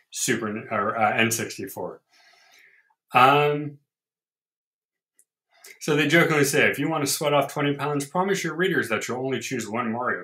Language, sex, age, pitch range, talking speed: English, male, 30-49, 110-155 Hz, 145 wpm